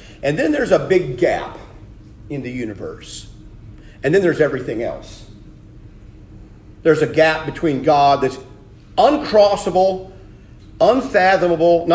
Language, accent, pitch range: English, American, 120-175 Hz